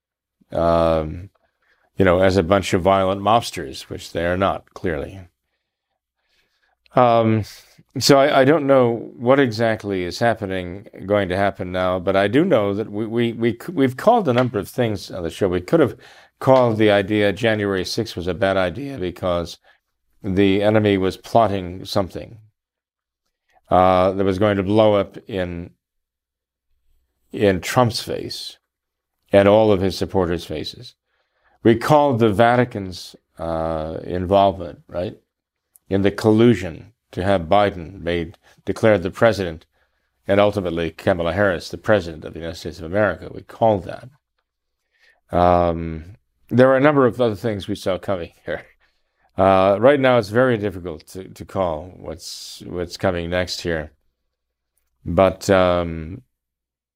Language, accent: English, American